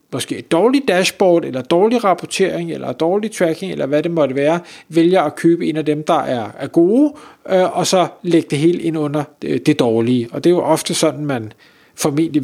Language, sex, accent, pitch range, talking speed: Danish, male, native, 145-180 Hz, 200 wpm